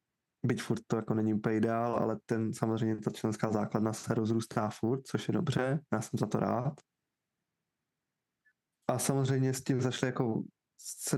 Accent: native